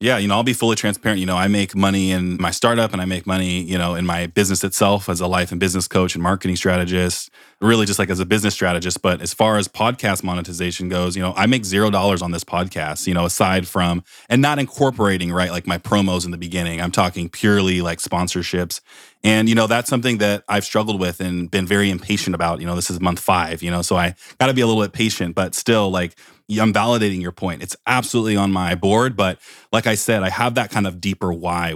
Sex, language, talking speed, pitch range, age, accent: male, English, 245 wpm, 90-110 Hz, 20-39, American